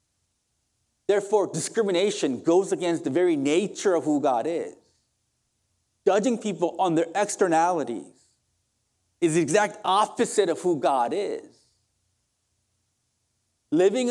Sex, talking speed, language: male, 105 wpm, English